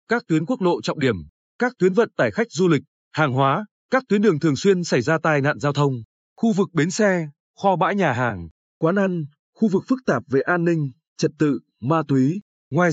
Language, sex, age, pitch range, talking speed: Vietnamese, male, 20-39, 145-200 Hz, 225 wpm